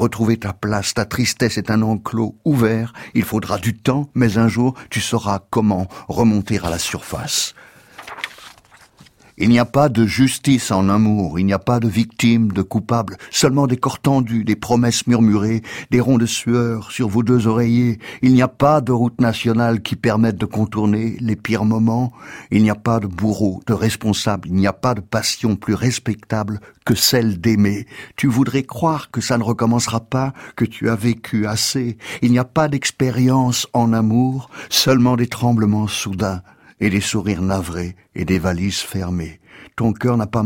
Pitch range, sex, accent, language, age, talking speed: 105-125 Hz, male, French, French, 60-79, 180 wpm